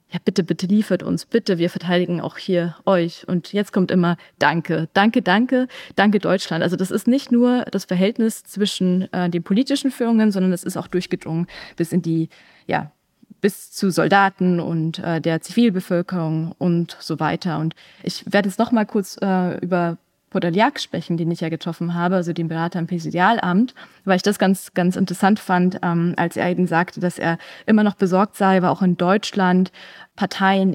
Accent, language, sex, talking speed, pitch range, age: German, German, female, 185 wpm, 170-200 Hz, 20-39